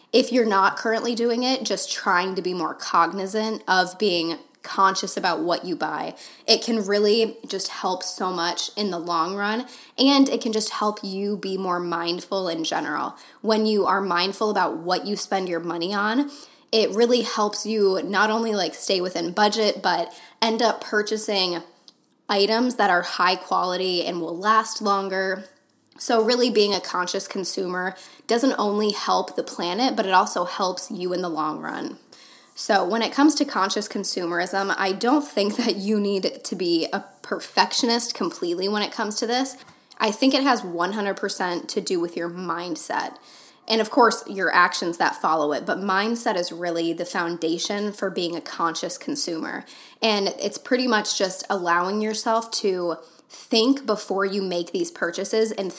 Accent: American